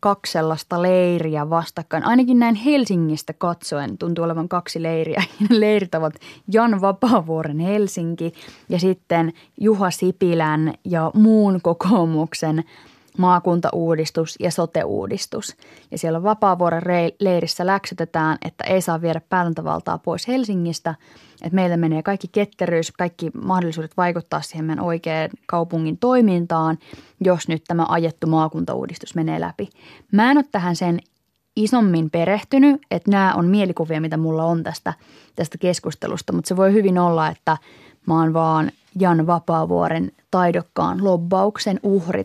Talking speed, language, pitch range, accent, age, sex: 130 wpm, Finnish, 165-200 Hz, native, 20-39, female